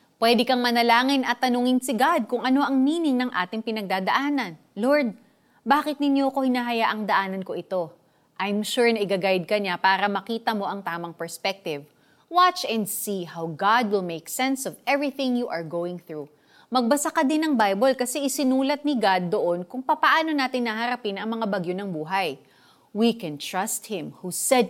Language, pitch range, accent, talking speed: Filipino, 185-260 Hz, native, 180 wpm